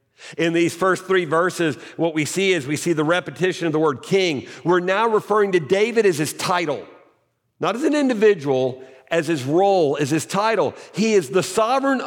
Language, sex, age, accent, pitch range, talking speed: English, male, 50-69, American, 145-200 Hz, 195 wpm